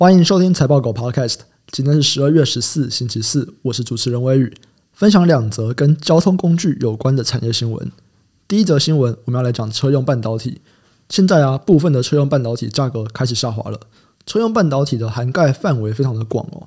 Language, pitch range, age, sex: Chinese, 120-150 Hz, 20-39, male